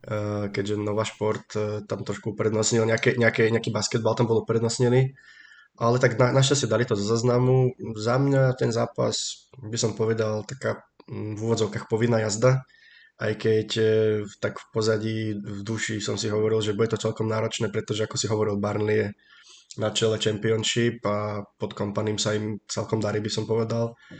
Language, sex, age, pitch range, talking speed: Slovak, male, 20-39, 110-120 Hz, 160 wpm